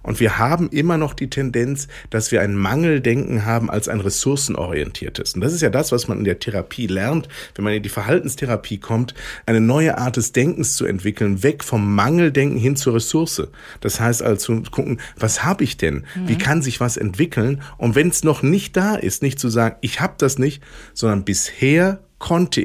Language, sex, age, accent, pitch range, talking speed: German, male, 50-69, German, 110-160 Hz, 200 wpm